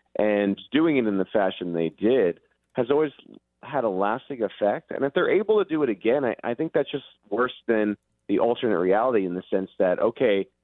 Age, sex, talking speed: 30-49, male, 210 wpm